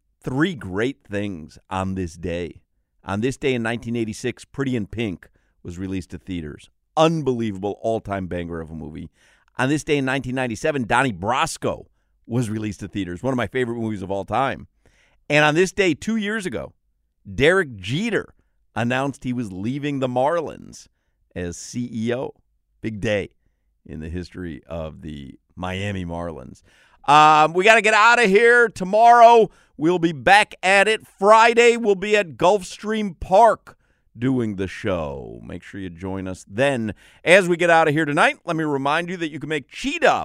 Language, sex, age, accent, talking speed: English, male, 50-69, American, 170 wpm